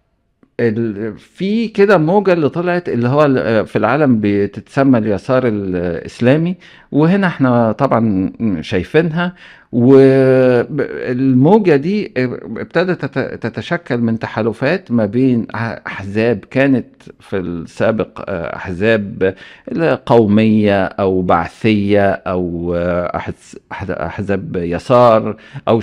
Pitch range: 100-135 Hz